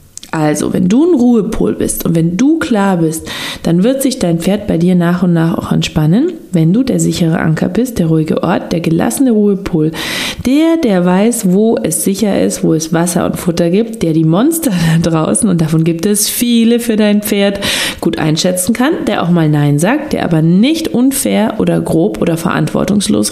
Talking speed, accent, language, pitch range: 200 wpm, German, German, 170-235 Hz